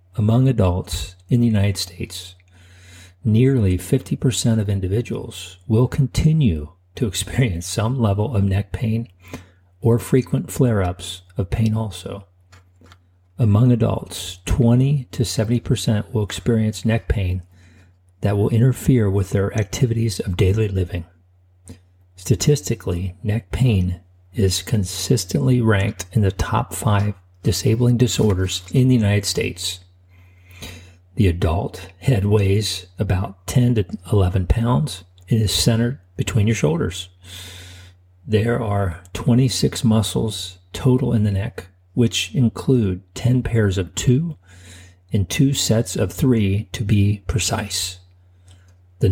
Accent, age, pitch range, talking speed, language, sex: American, 50-69, 90-115 Hz, 115 wpm, English, male